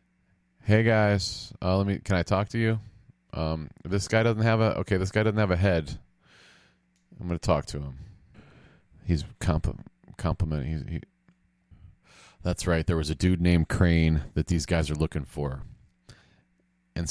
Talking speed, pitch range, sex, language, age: 170 wpm, 75-100 Hz, male, English, 30-49